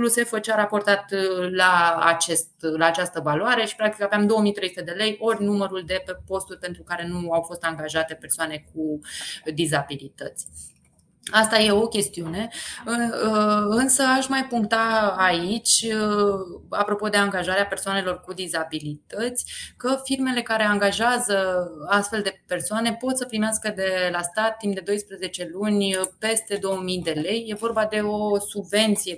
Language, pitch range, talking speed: Romanian, 175-215 Hz, 140 wpm